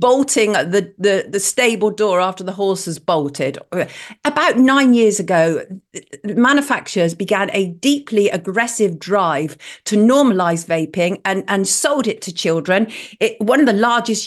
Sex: female